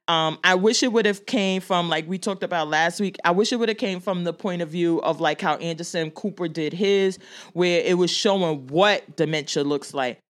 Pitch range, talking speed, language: 160-210 Hz, 235 wpm, English